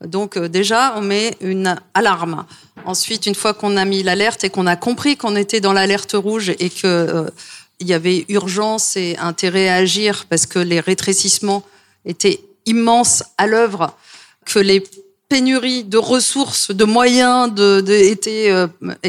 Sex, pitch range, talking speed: female, 195-255 Hz, 160 wpm